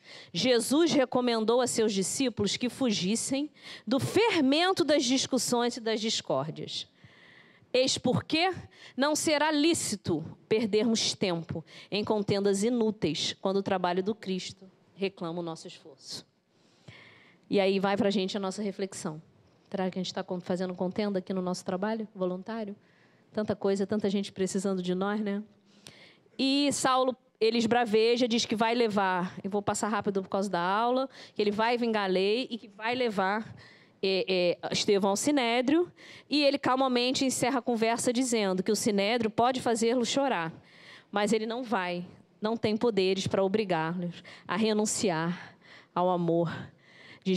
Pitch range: 190-240 Hz